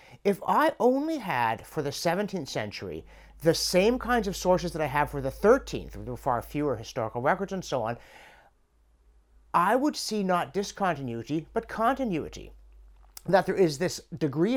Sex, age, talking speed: male, 50-69, 160 wpm